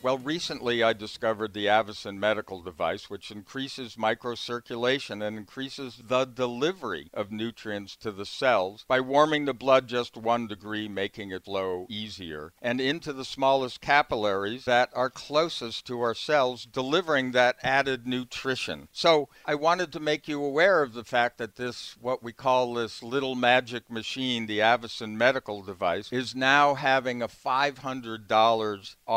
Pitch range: 110-130 Hz